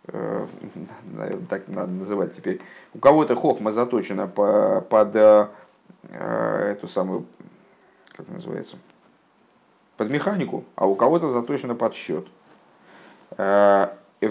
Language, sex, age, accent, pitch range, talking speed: Russian, male, 50-69, native, 105-140 Hz, 90 wpm